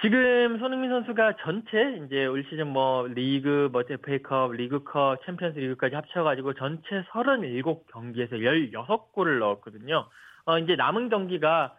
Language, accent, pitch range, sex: Korean, native, 145-215 Hz, male